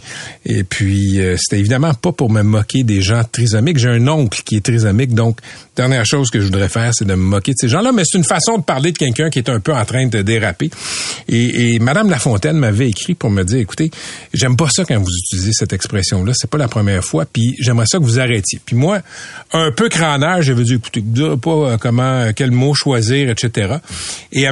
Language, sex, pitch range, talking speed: French, male, 105-145 Hz, 235 wpm